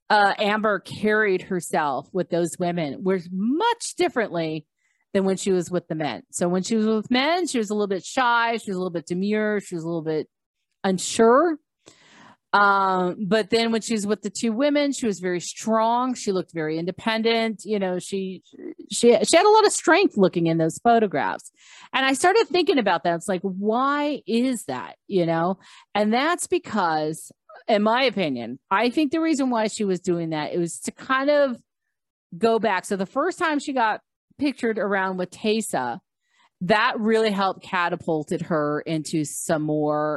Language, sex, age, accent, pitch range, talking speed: English, female, 40-59, American, 175-230 Hz, 190 wpm